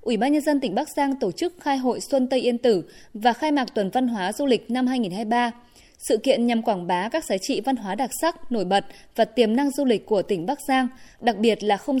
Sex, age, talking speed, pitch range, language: female, 20-39, 260 wpm, 215-270 Hz, Vietnamese